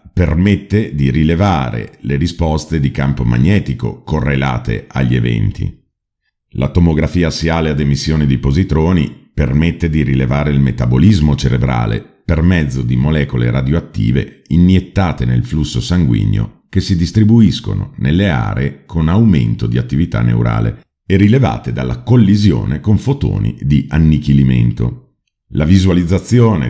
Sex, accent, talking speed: male, native, 120 wpm